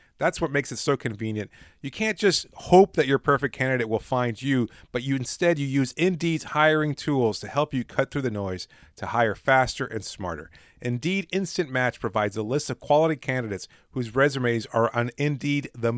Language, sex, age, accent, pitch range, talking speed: English, male, 40-59, American, 115-150 Hz, 190 wpm